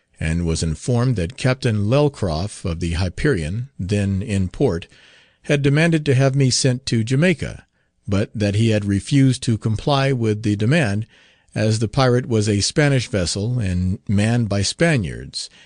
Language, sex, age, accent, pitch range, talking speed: English, male, 50-69, American, 100-135 Hz, 155 wpm